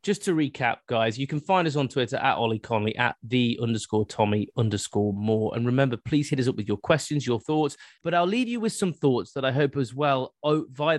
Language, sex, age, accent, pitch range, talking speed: English, male, 30-49, British, 110-145 Hz, 235 wpm